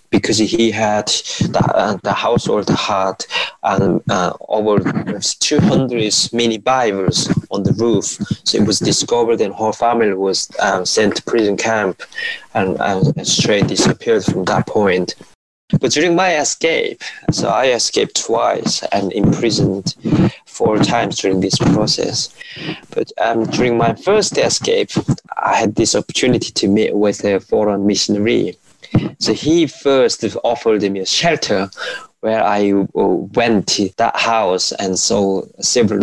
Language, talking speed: English, 140 wpm